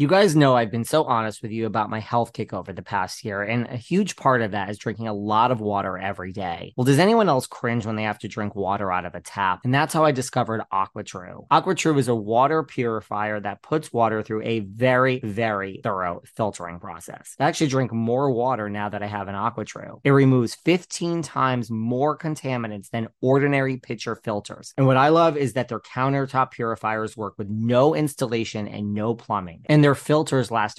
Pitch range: 110-140 Hz